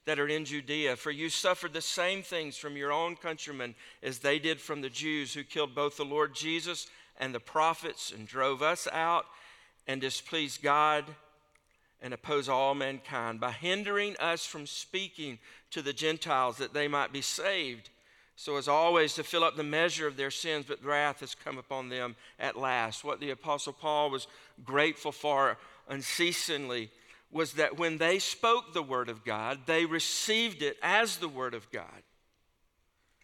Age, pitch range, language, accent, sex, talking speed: 50-69, 130-170 Hz, English, American, male, 175 wpm